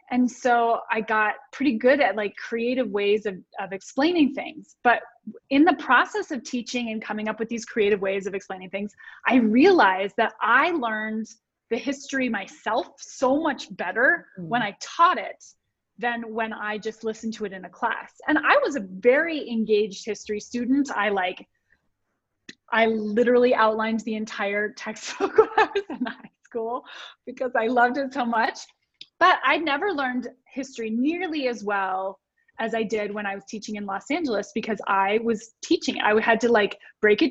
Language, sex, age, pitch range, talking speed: English, female, 20-39, 210-260 Hz, 175 wpm